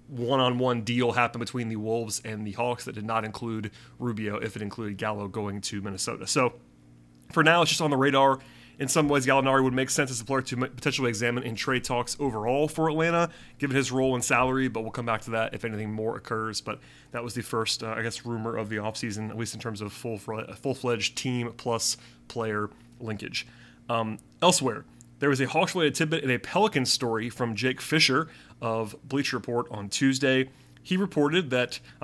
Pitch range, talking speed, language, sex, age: 110-135 Hz, 205 wpm, English, male, 30-49